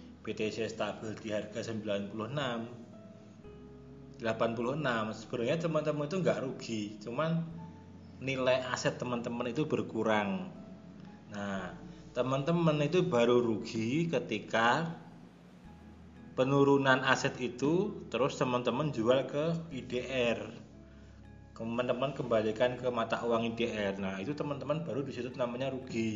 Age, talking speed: 20-39, 100 wpm